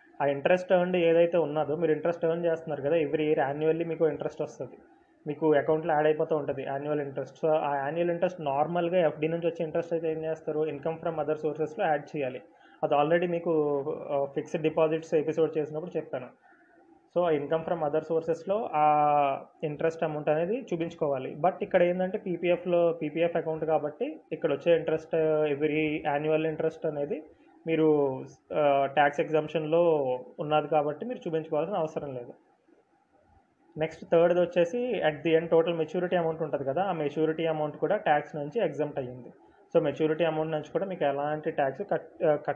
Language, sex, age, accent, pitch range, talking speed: Telugu, male, 20-39, native, 150-170 Hz, 155 wpm